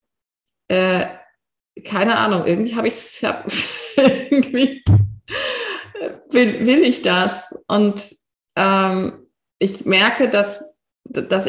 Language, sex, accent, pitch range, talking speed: German, female, German, 200-275 Hz, 95 wpm